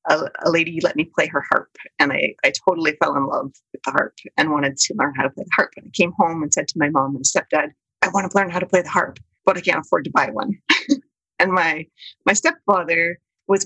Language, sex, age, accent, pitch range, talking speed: English, female, 30-49, American, 155-225 Hz, 255 wpm